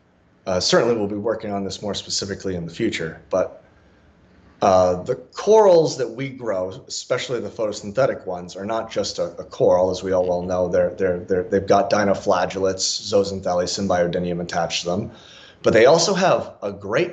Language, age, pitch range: English, 30-49, 95-130 Hz